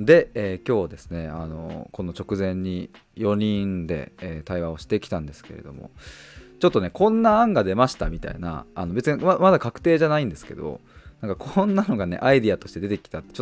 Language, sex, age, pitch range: Japanese, male, 20-39, 90-125 Hz